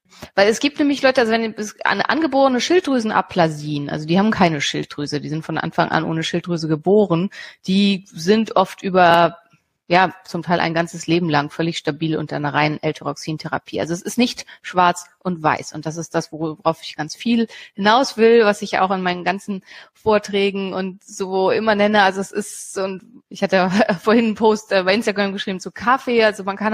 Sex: female